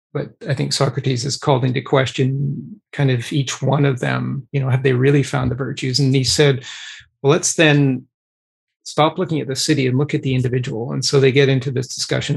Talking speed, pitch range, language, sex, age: 220 wpm, 135-155 Hz, English, male, 40-59